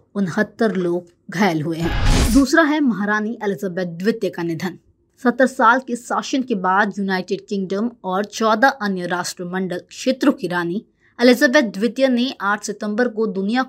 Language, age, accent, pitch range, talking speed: Hindi, 20-39, native, 185-240 Hz, 155 wpm